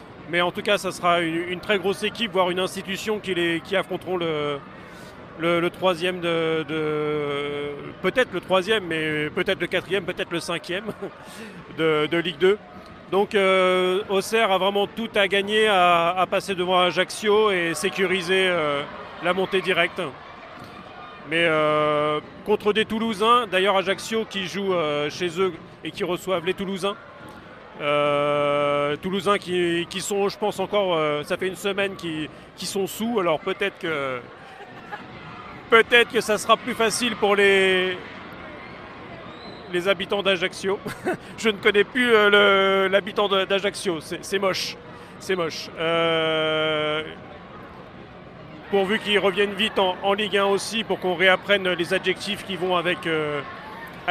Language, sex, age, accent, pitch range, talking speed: French, male, 40-59, French, 170-200 Hz, 150 wpm